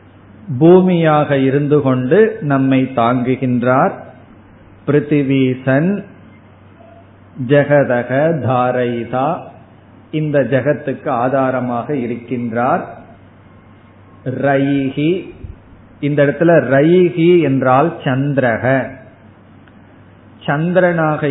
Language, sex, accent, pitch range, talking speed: Tamil, male, native, 115-145 Hz, 55 wpm